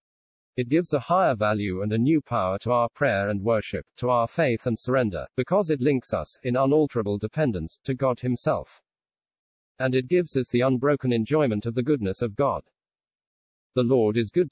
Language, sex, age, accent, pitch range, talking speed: English, male, 50-69, British, 110-140 Hz, 185 wpm